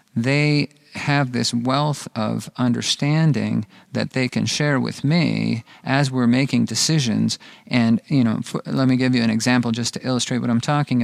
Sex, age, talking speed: male, 40-59, 175 wpm